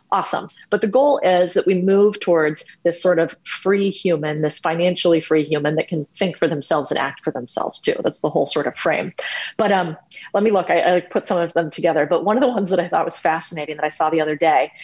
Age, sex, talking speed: 30-49, female, 250 wpm